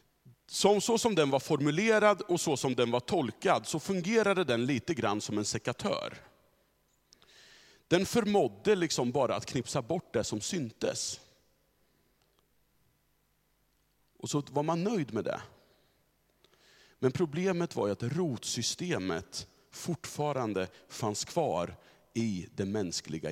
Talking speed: 125 wpm